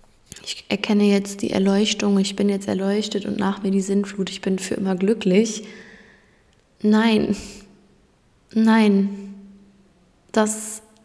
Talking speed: 120 wpm